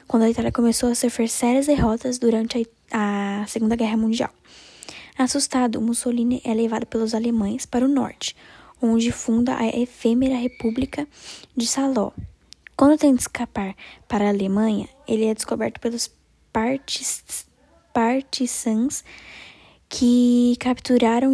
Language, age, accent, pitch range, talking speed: Portuguese, 10-29, Brazilian, 230-255 Hz, 120 wpm